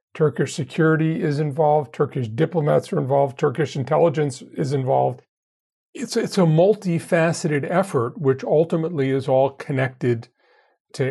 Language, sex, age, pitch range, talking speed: English, male, 40-59, 135-170 Hz, 125 wpm